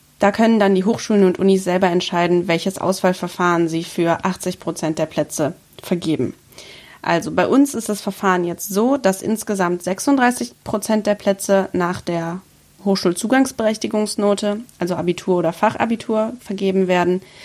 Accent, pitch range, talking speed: German, 180-215 Hz, 140 wpm